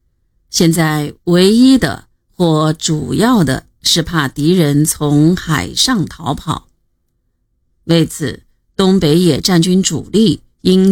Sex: female